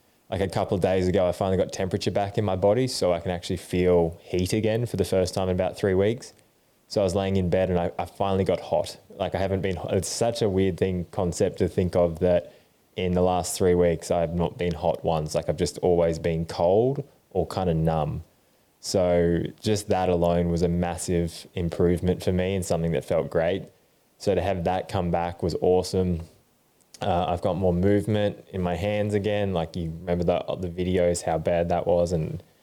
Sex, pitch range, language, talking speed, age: male, 85-95 Hz, English, 215 wpm, 20-39